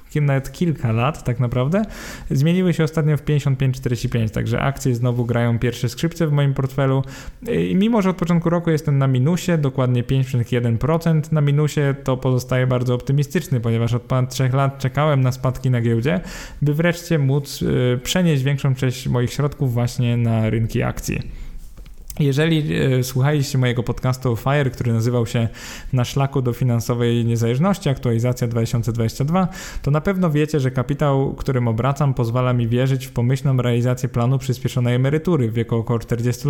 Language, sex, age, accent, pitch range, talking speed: Polish, male, 10-29, native, 120-145 Hz, 155 wpm